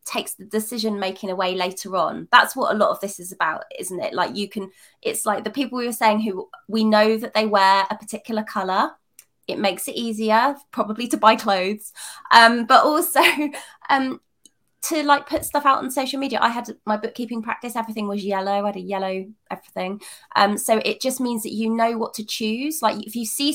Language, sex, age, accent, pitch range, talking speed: English, female, 20-39, British, 190-230 Hz, 215 wpm